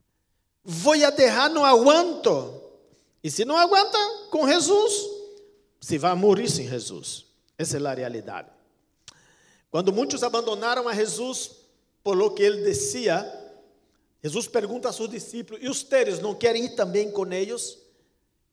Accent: Brazilian